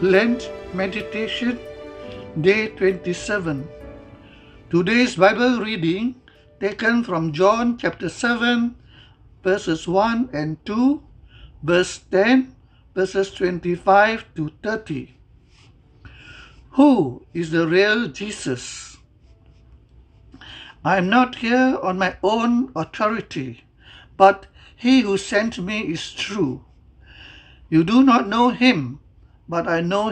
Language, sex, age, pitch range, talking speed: English, male, 60-79, 150-220 Hz, 100 wpm